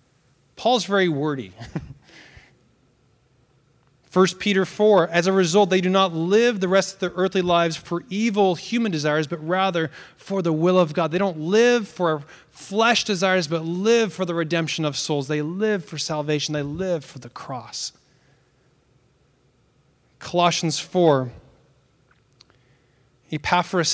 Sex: male